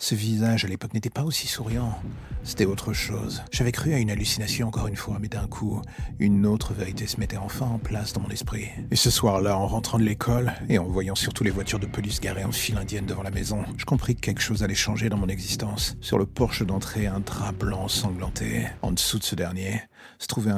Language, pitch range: French, 100-115 Hz